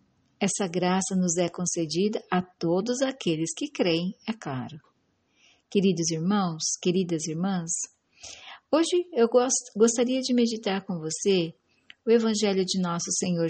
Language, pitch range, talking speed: Portuguese, 175-230 Hz, 130 wpm